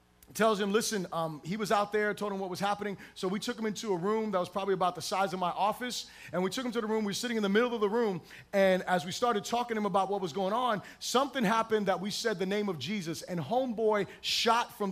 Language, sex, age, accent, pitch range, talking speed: English, male, 30-49, American, 190-235 Hz, 280 wpm